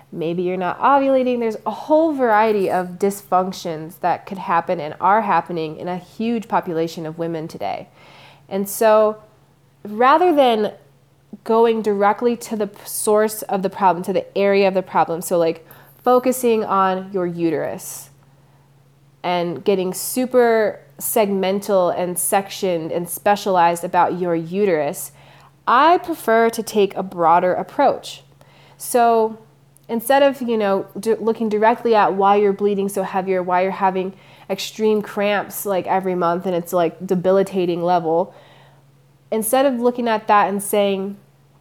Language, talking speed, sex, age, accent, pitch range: English, 140 wpm, female, 20-39, American, 170-215 Hz